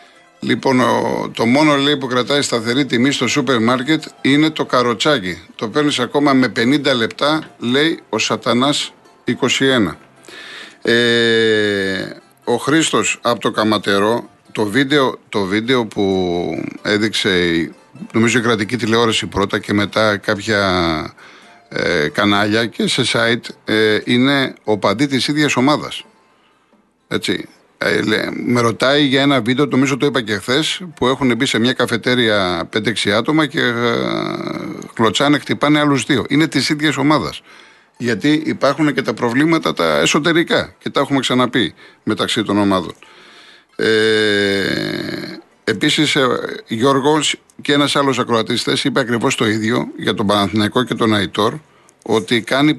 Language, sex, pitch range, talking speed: Greek, male, 110-140 Hz, 130 wpm